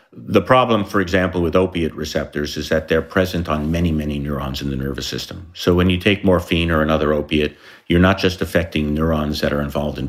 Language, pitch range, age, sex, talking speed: English, 75-95 Hz, 50-69, male, 215 wpm